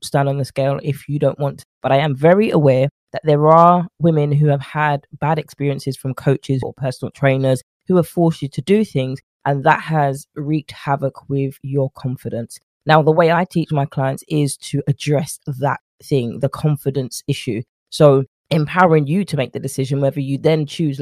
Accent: British